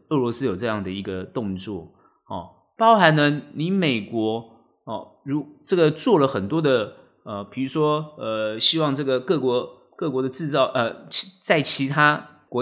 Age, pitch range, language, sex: 30-49, 115-165 Hz, Chinese, male